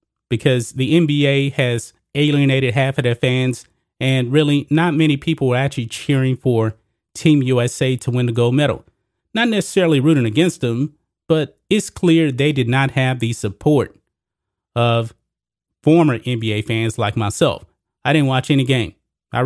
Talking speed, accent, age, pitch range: 155 wpm, American, 30-49, 120-145 Hz